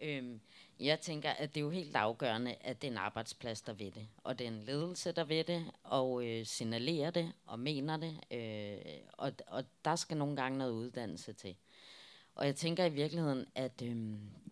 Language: Danish